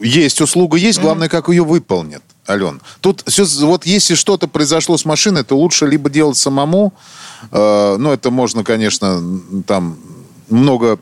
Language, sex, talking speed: Russian, male, 160 wpm